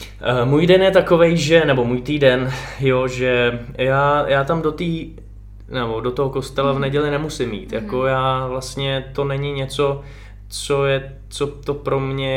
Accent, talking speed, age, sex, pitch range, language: native, 170 wpm, 20-39, male, 115-135 Hz, Czech